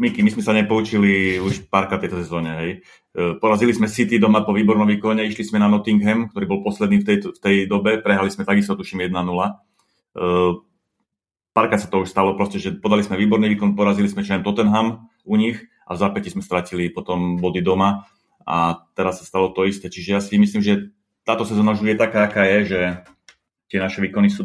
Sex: male